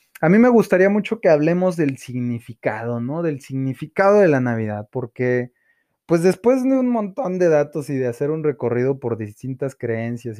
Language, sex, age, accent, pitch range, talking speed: Spanish, male, 20-39, Mexican, 120-155 Hz, 180 wpm